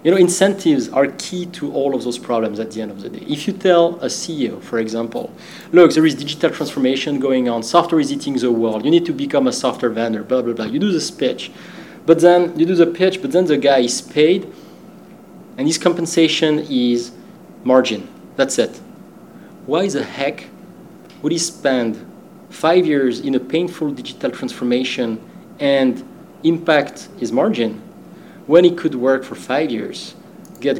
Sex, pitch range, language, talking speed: male, 120-165 Hz, English, 180 wpm